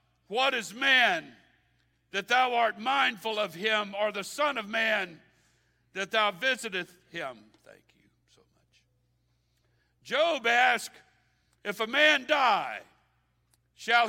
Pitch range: 205-265 Hz